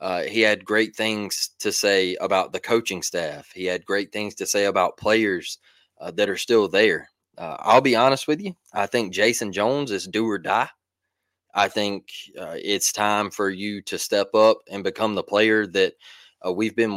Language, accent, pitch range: English, American, 100-120 Hz